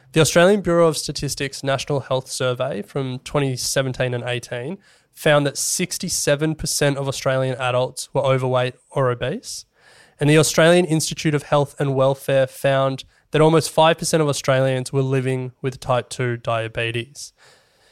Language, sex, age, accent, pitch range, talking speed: English, male, 20-39, Australian, 125-145 Hz, 140 wpm